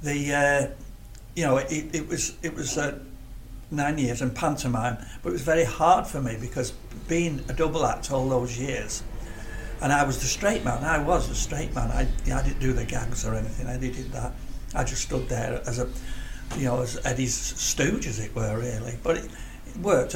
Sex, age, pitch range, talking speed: male, 60-79, 120-155 Hz, 215 wpm